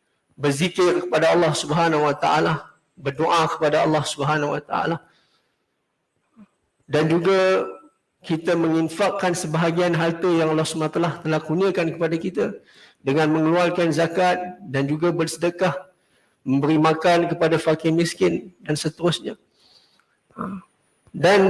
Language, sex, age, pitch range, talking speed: Malay, male, 50-69, 145-170 Hz, 115 wpm